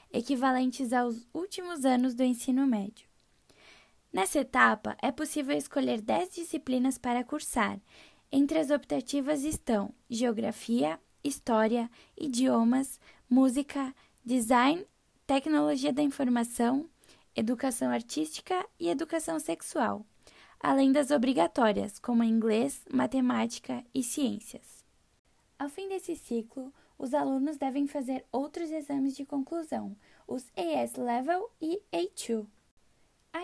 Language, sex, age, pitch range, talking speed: Portuguese, female, 10-29, 240-305 Hz, 105 wpm